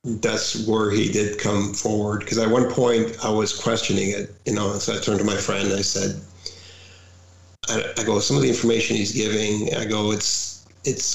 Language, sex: English, male